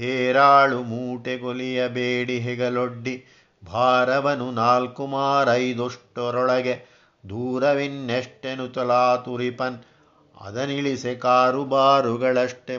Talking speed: 55 wpm